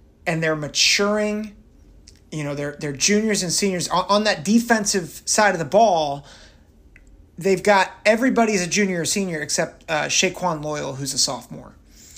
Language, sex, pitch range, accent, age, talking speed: English, male, 155-195 Hz, American, 30-49, 160 wpm